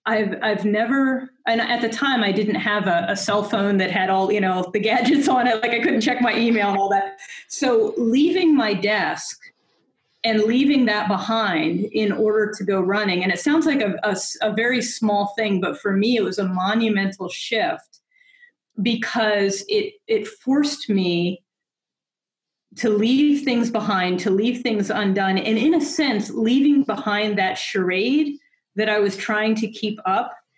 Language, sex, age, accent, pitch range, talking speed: English, female, 30-49, American, 200-245 Hz, 180 wpm